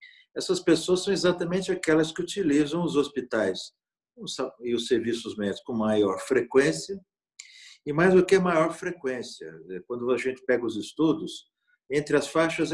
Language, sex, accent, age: Portuguese, male, Brazilian, 50-69